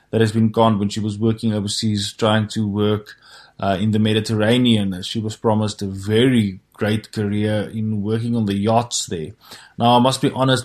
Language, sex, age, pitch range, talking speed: English, male, 20-39, 105-120 Hz, 190 wpm